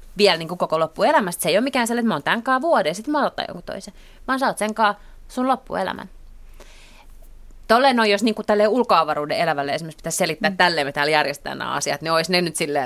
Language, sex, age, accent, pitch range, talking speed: Finnish, female, 30-49, native, 165-225 Hz, 215 wpm